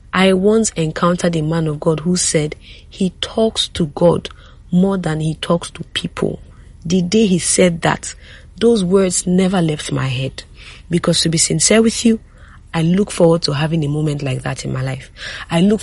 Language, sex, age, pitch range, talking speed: English, female, 40-59, 155-195 Hz, 190 wpm